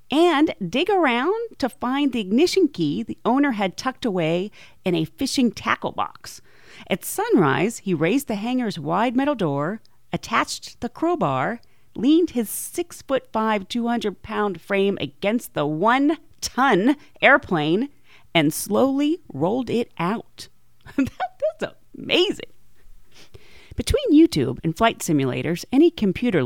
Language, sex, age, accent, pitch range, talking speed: English, female, 40-59, American, 175-270 Hz, 120 wpm